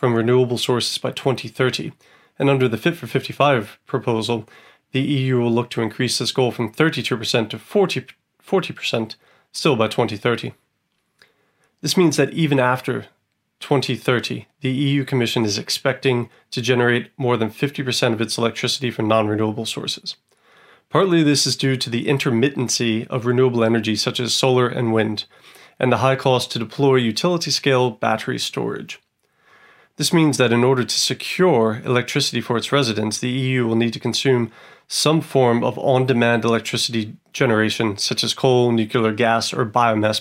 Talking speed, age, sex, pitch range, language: 155 wpm, 30-49, male, 115-135 Hz, English